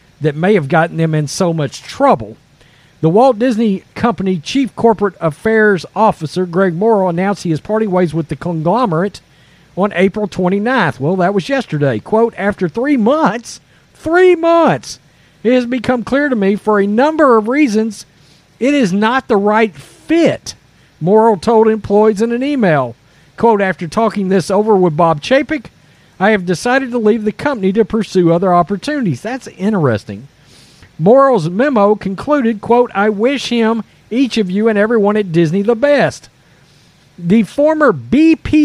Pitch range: 170-240 Hz